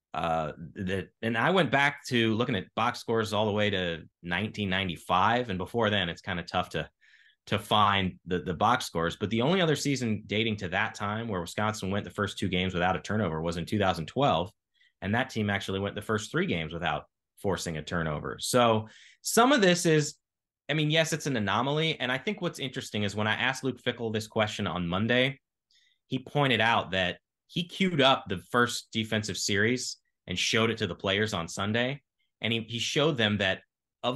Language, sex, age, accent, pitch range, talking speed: English, male, 20-39, American, 100-135 Hz, 205 wpm